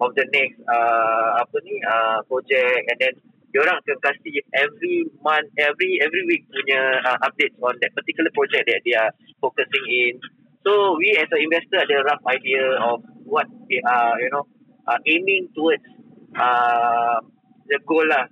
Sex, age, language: male, 20-39, Malay